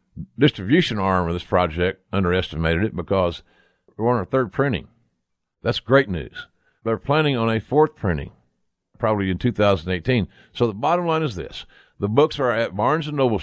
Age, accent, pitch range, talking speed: 50-69, American, 95-135 Hz, 165 wpm